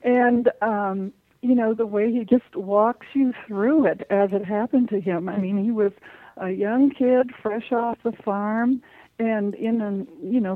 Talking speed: 180 wpm